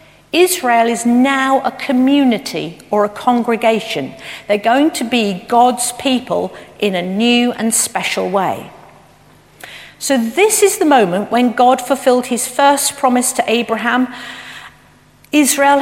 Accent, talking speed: British, 130 wpm